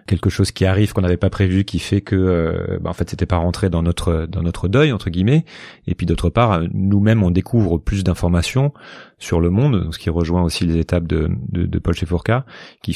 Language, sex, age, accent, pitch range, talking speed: French, male, 30-49, French, 85-110 Hz, 225 wpm